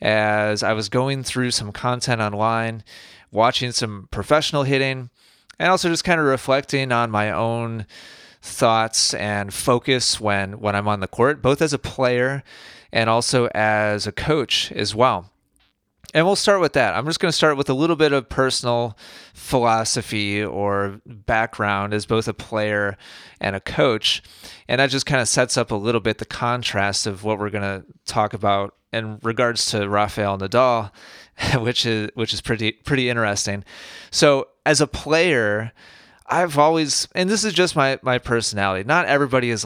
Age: 30-49